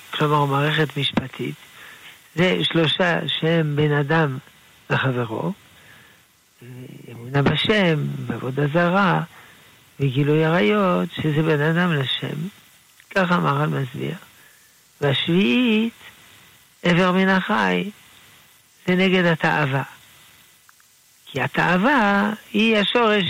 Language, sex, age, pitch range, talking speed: Hebrew, male, 60-79, 140-180 Hz, 85 wpm